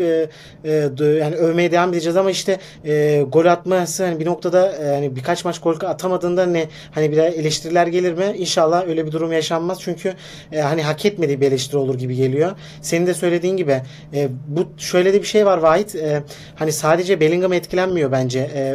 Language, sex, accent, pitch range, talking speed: Turkish, male, native, 150-180 Hz, 195 wpm